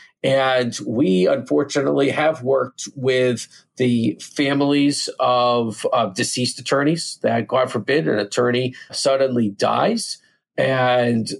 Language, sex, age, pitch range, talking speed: English, male, 40-59, 120-150 Hz, 105 wpm